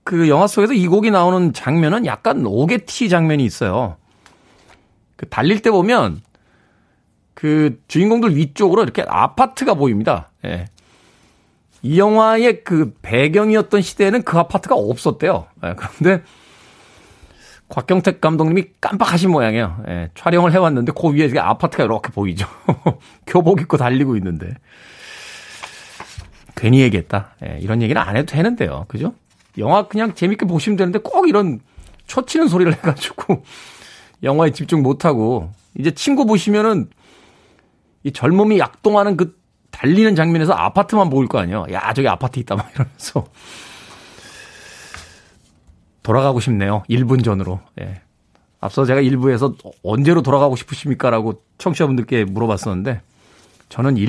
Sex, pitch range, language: male, 110-185 Hz, Korean